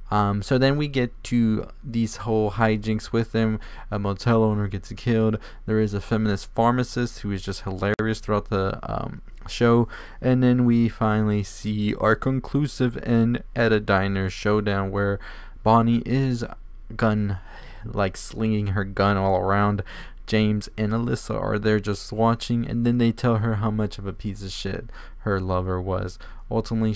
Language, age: English, 20-39